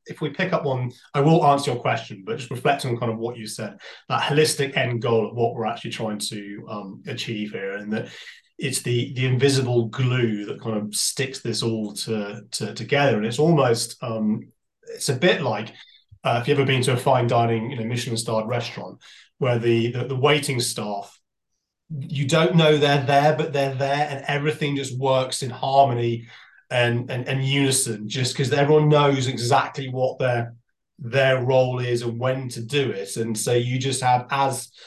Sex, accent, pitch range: male, British, 115-140 Hz